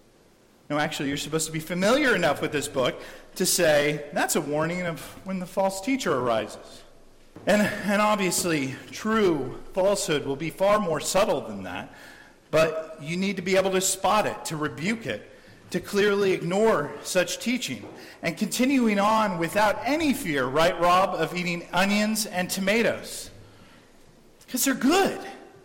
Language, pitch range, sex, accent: English, 155-210 Hz, male, American